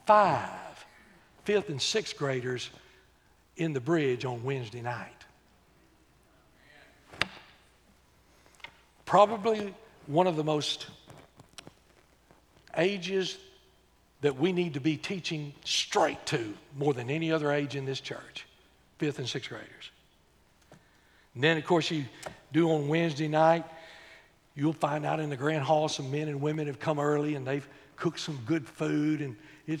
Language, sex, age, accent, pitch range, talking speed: English, male, 60-79, American, 150-190 Hz, 135 wpm